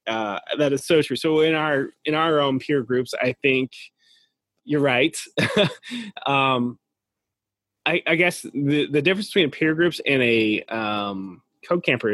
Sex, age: male, 20-39